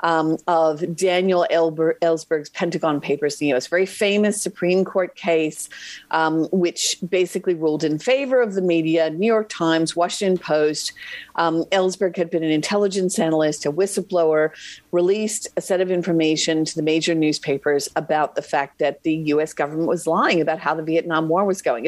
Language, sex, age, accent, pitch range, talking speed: English, female, 50-69, American, 165-210 Hz, 170 wpm